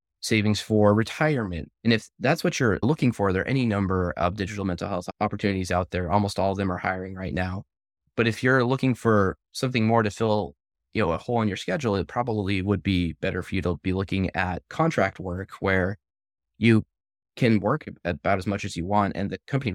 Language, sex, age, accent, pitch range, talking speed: English, male, 20-39, American, 90-110 Hz, 215 wpm